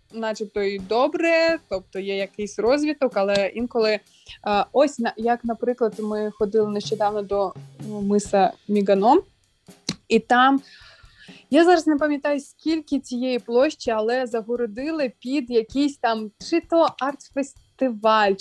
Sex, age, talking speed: female, 20-39, 115 wpm